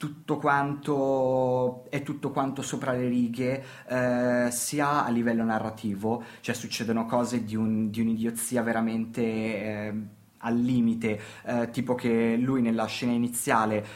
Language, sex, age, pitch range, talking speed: Italian, male, 20-39, 115-130 Hz, 135 wpm